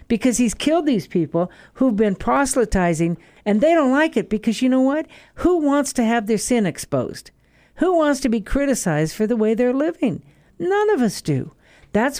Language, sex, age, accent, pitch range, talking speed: English, female, 60-79, American, 195-265 Hz, 190 wpm